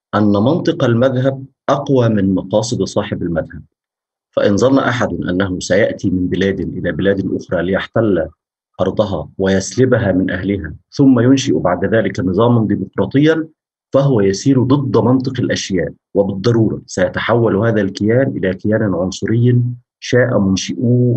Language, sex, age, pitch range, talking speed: Arabic, male, 50-69, 100-130 Hz, 120 wpm